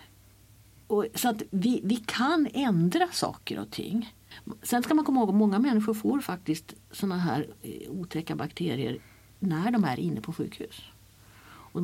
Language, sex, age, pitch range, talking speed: Swedish, female, 50-69, 155-215 Hz, 150 wpm